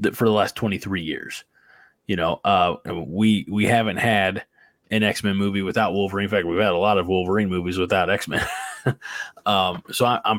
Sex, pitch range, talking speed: male, 100-120 Hz, 175 wpm